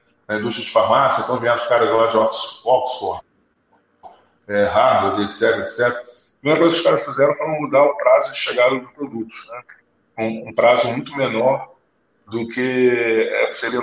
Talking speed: 160 wpm